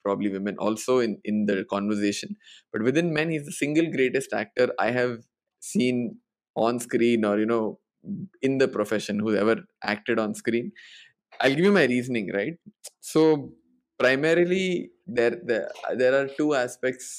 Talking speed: 155 wpm